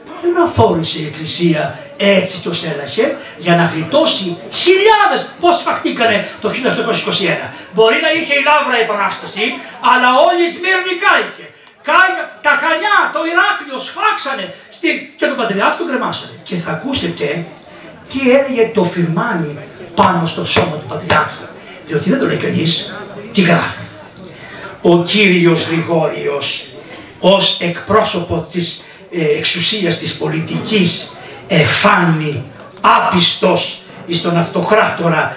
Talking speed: 120 wpm